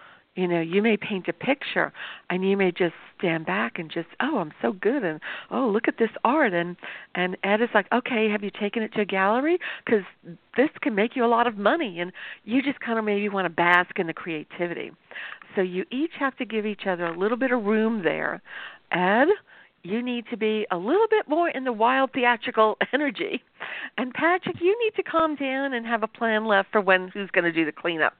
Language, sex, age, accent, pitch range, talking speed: English, female, 50-69, American, 175-230 Hz, 230 wpm